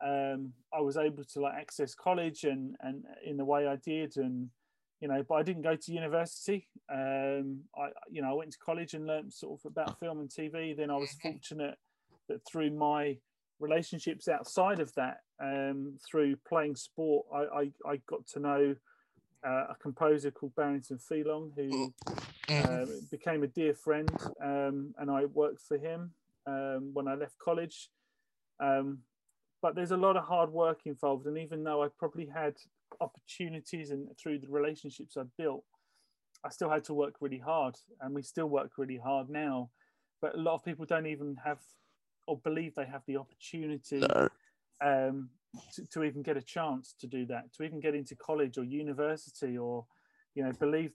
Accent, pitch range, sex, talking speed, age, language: British, 140-160 Hz, male, 185 wpm, 30-49, English